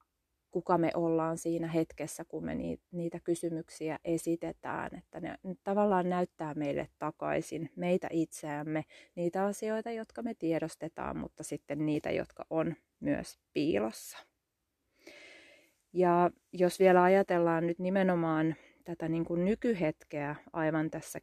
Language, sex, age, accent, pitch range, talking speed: Finnish, female, 30-49, native, 155-180 Hz, 115 wpm